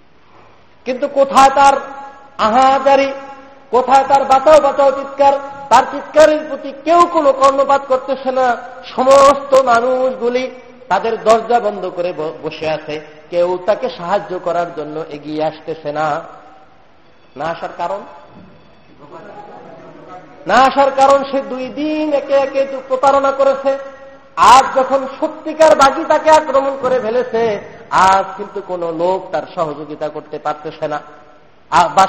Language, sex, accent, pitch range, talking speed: Bengali, male, native, 170-270 Hz, 120 wpm